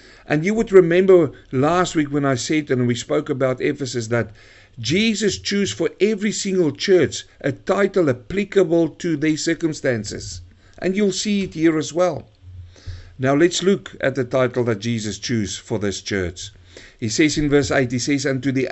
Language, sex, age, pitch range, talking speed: English, male, 50-69, 105-170 Hz, 180 wpm